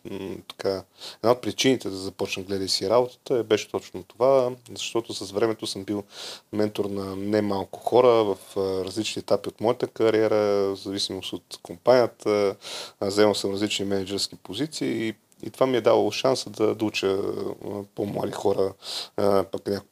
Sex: male